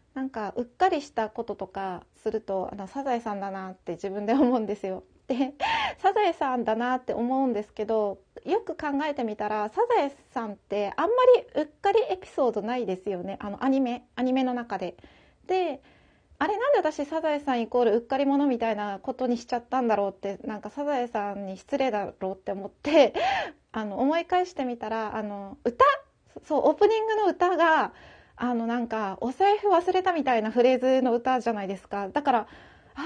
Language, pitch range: Japanese, 210-310 Hz